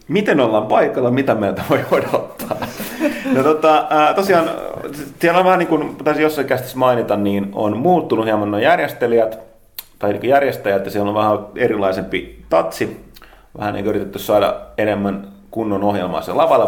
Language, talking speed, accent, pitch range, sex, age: Finnish, 150 wpm, native, 100-130 Hz, male, 30-49